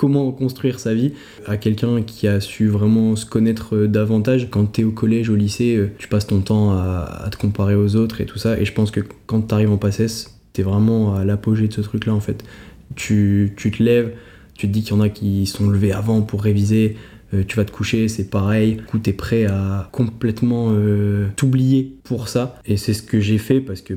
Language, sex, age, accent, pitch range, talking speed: French, male, 20-39, French, 105-120 Hz, 220 wpm